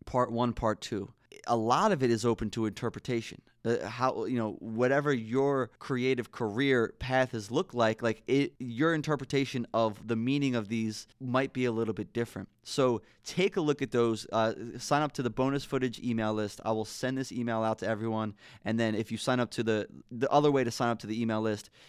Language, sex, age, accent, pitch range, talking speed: English, male, 20-39, American, 110-135 Hz, 220 wpm